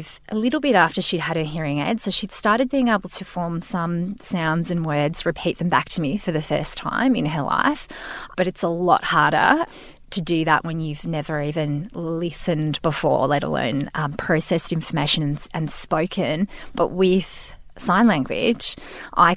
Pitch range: 155-190 Hz